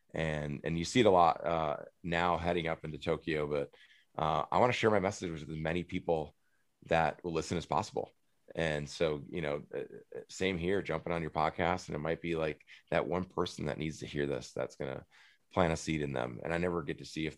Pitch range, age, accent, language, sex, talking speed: 75-90 Hz, 30-49, American, English, male, 230 wpm